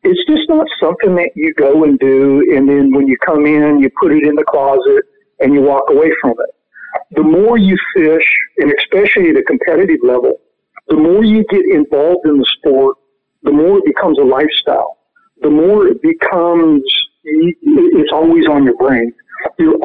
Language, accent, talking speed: English, American, 185 wpm